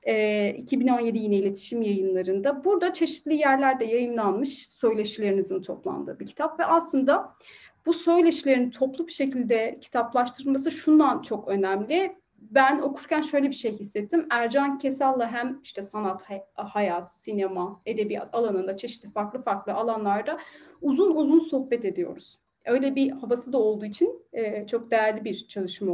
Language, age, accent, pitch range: Turkish, 30-49, native, 200-275 Hz